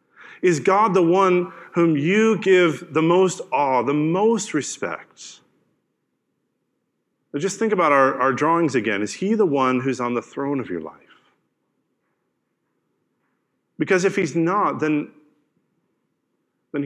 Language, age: English, 40-59